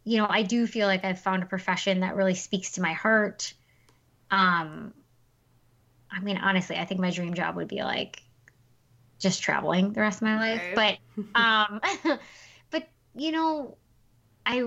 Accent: American